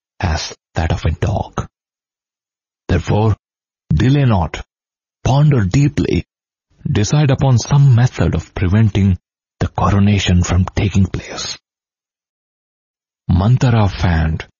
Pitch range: 90-110 Hz